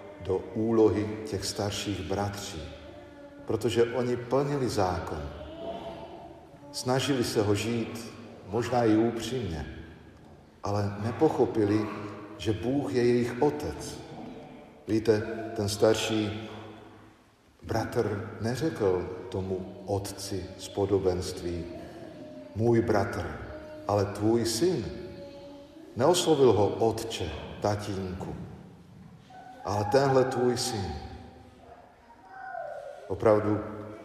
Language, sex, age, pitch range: Slovak, male, 50-69, 100-120 Hz